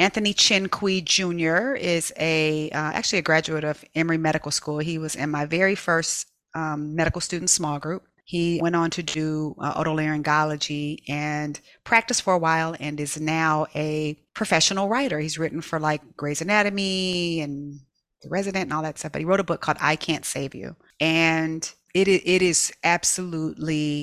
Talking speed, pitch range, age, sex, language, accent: 175 wpm, 145-165 Hz, 40-59, female, English, American